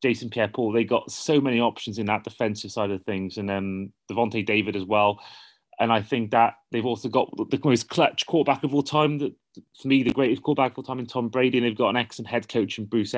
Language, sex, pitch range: English, male, 105-125 Hz